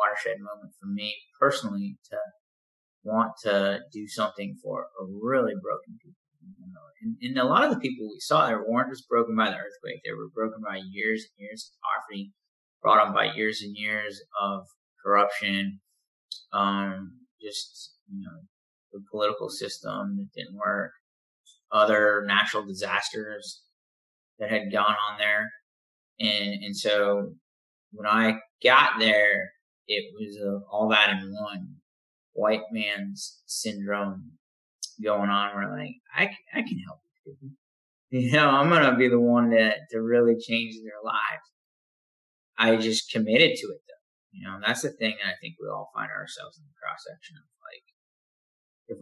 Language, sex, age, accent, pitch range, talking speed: English, male, 30-49, American, 100-140 Hz, 160 wpm